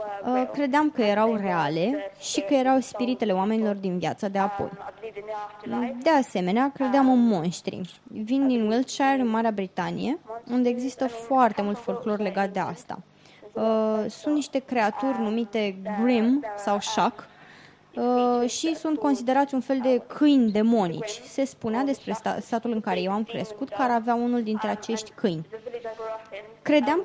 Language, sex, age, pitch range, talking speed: Romanian, female, 20-39, 210-255 Hz, 140 wpm